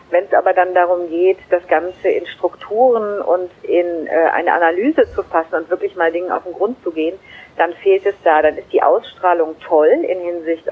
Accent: German